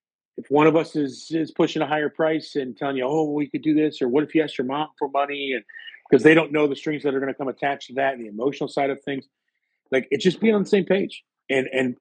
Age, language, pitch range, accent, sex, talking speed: 40-59, English, 130-165 Hz, American, male, 290 wpm